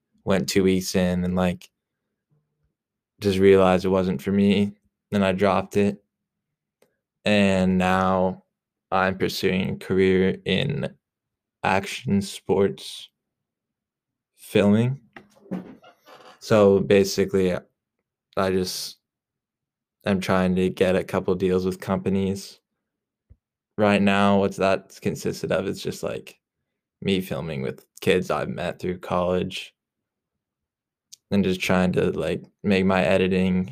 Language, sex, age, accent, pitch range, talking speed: English, male, 20-39, American, 95-100 Hz, 115 wpm